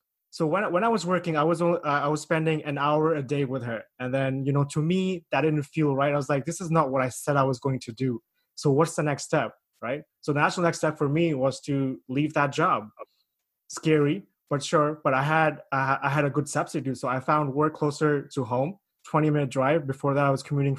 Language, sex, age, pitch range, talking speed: English, male, 20-39, 140-165 Hz, 250 wpm